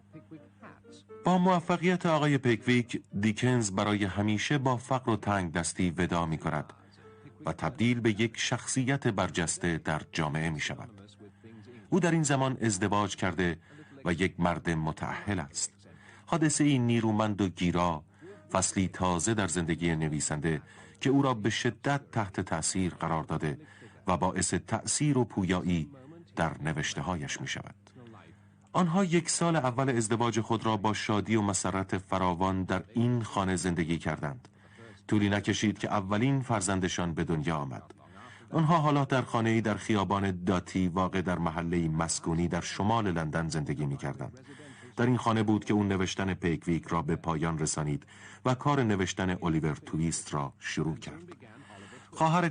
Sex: male